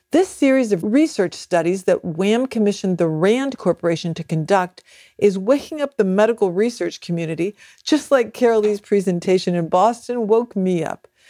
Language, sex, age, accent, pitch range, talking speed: English, female, 50-69, American, 180-250 Hz, 155 wpm